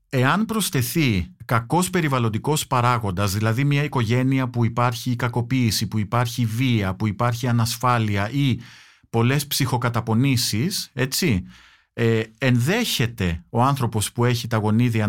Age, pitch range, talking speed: 50-69, 110-135 Hz, 110 wpm